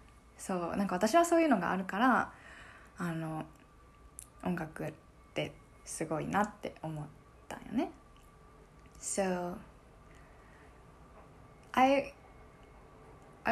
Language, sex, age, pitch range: Japanese, female, 20-39, 170-230 Hz